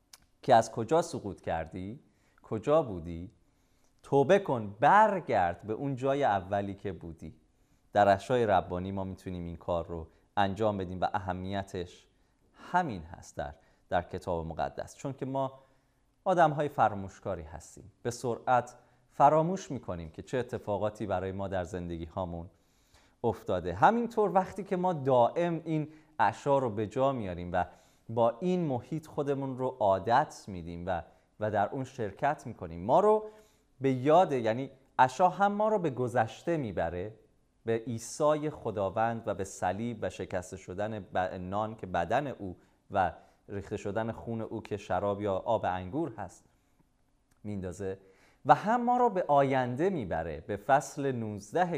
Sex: male